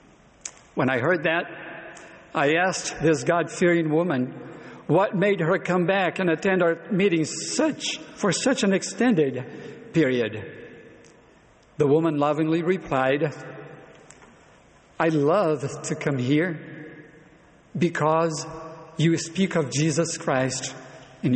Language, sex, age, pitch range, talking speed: English, male, 50-69, 150-185 Hz, 110 wpm